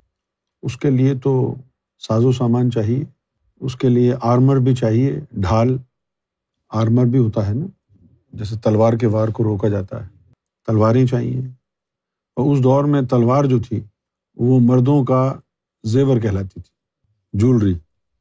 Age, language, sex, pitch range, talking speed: 50-69, Urdu, male, 115-140 Hz, 145 wpm